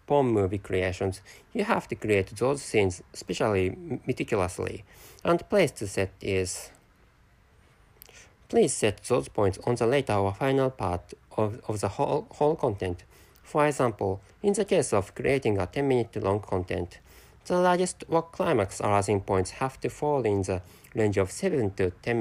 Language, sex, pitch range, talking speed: English, male, 95-140 Hz, 160 wpm